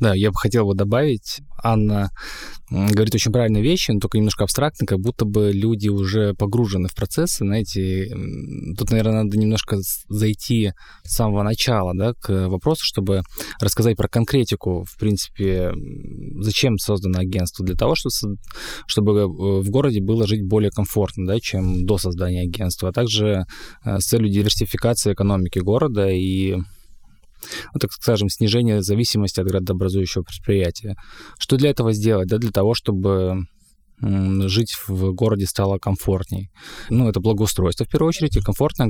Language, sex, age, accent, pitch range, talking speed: Russian, male, 20-39, native, 95-110 Hz, 140 wpm